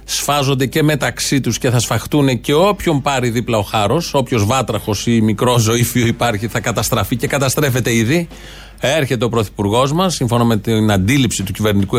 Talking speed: 170 wpm